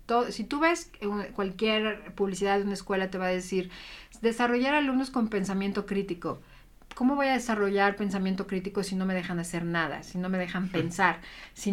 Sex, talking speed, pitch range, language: female, 185 wpm, 175-205 Hz, Spanish